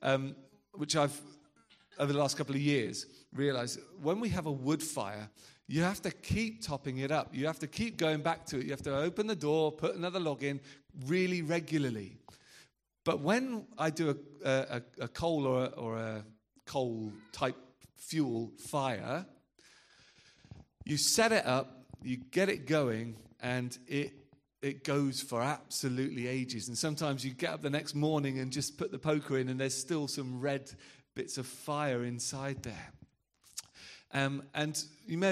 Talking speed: 175 wpm